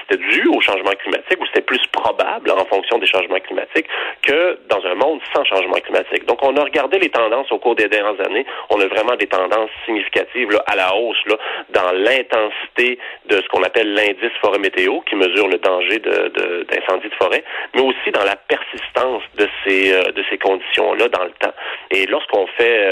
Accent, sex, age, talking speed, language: French, male, 30-49, 200 wpm, French